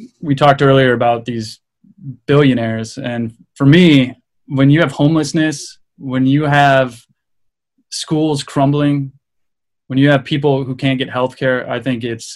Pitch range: 120-145 Hz